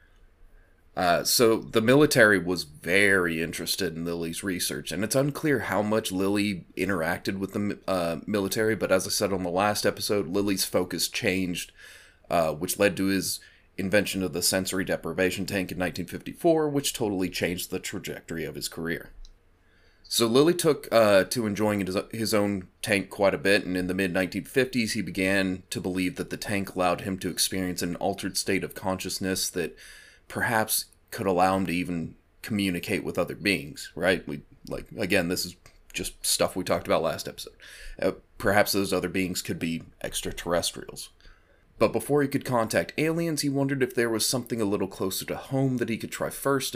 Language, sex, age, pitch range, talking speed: English, male, 30-49, 90-110 Hz, 180 wpm